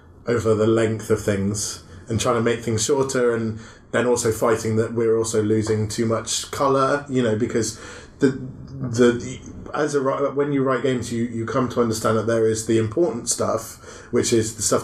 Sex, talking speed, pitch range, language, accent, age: male, 200 wpm, 110-120 Hz, English, British, 20-39